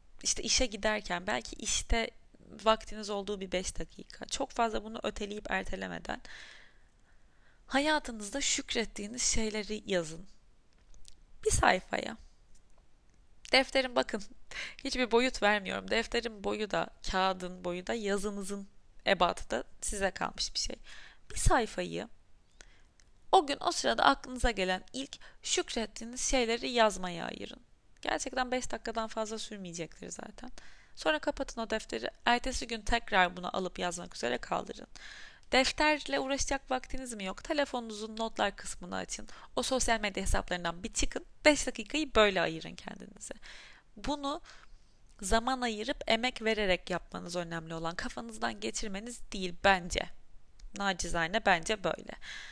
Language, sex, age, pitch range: Turkish, female, 20-39, 195-255 Hz